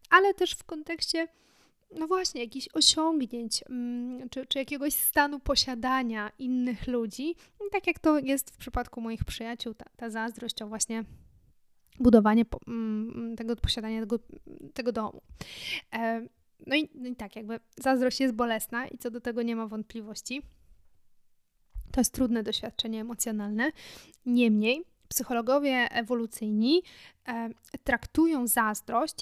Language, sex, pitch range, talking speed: Polish, female, 230-275 Hz, 125 wpm